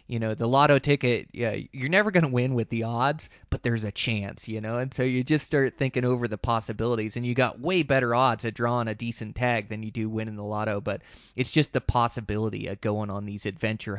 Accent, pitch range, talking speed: American, 105-125 Hz, 235 wpm